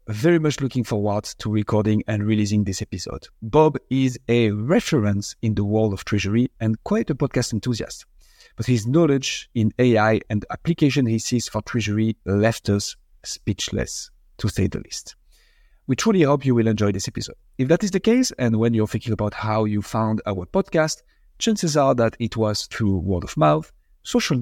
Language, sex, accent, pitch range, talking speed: English, male, French, 105-140 Hz, 185 wpm